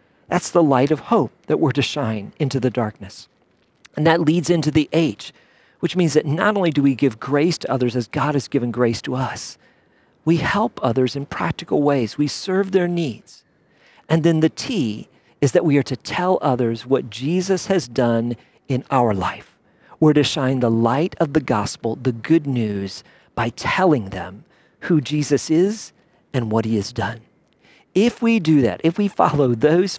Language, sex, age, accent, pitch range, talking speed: English, male, 40-59, American, 120-165 Hz, 190 wpm